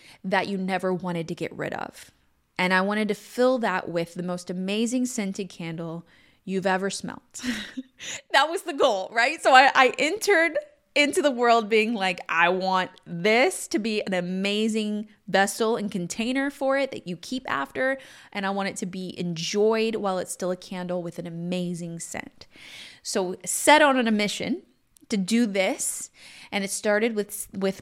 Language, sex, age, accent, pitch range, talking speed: English, female, 20-39, American, 170-210 Hz, 175 wpm